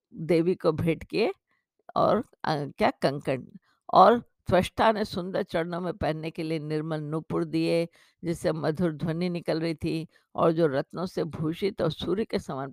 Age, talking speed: 50-69, 165 wpm